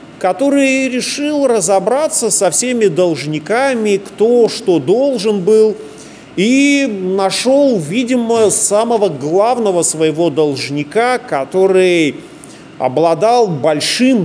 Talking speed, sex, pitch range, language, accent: 85 wpm, male, 165-220 Hz, Russian, native